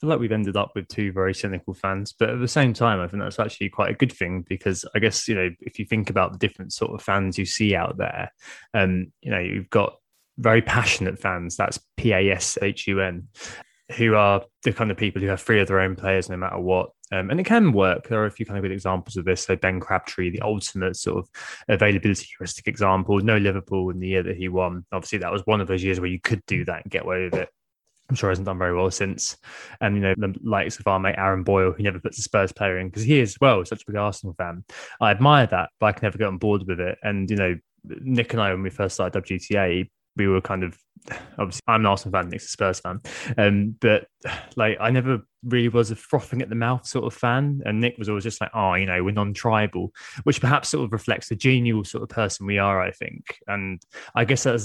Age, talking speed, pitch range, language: 20-39, 255 wpm, 95-110 Hz, English